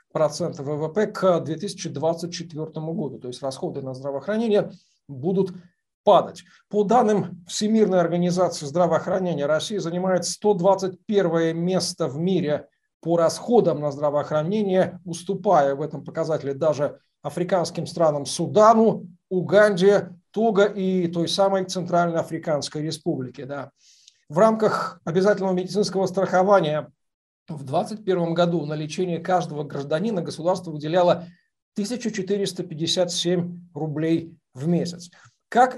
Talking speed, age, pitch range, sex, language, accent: 105 wpm, 50-69, 155-190 Hz, male, Russian, native